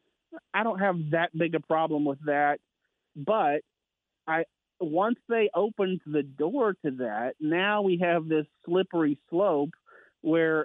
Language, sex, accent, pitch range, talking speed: English, male, American, 140-175 Hz, 140 wpm